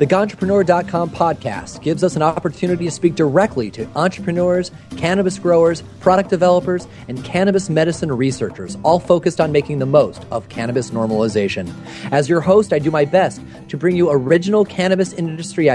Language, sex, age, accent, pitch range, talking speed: English, male, 30-49, American, 130-180 Hz, 160 wpm